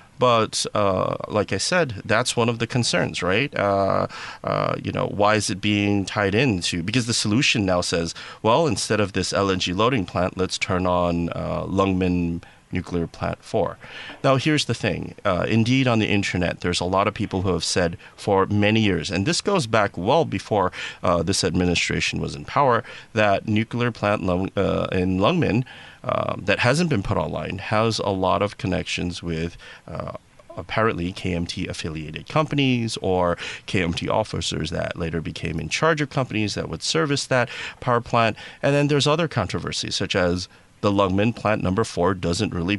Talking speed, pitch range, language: 180 wpm, 90-115 Hz, English